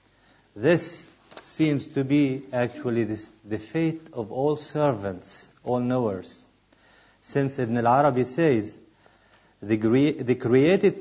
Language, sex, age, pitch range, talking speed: English, male, 50-69, 115-155 Hz, 105 wpm